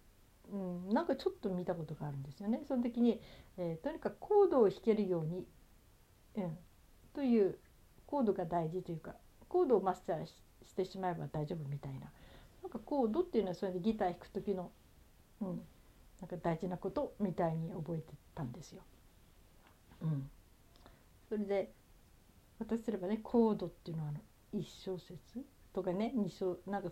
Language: Japanese